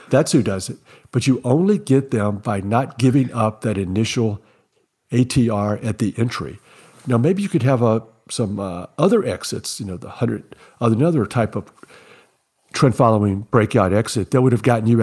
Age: 60-79